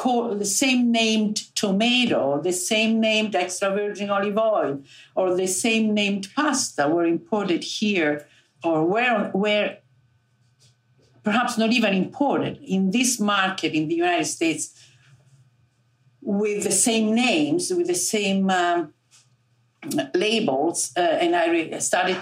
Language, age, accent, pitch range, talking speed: English, 50-69, Italian, 150-245 Hz, 125 wpm